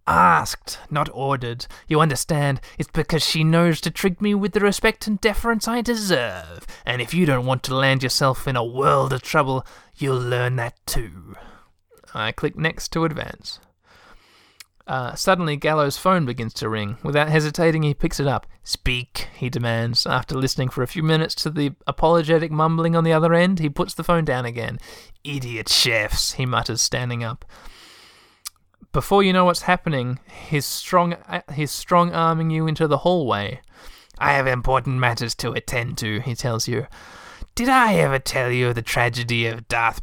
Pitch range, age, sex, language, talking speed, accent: 125-165 Hz, 20-39, male, English, 175 wpm, Australian